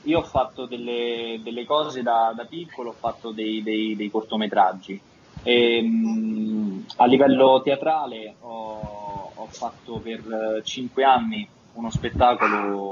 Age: 20-39